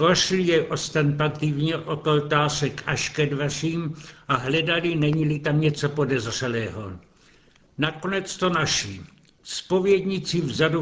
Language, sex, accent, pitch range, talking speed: Czech, male, native, 145-170 Hz, 105 wpm